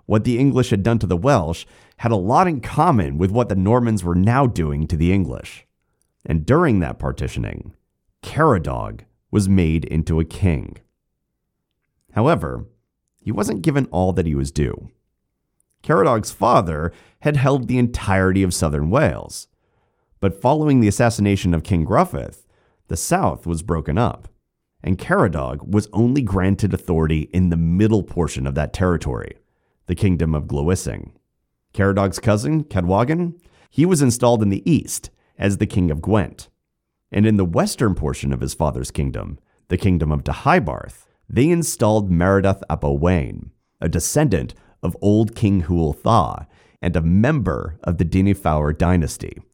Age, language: 30-49, English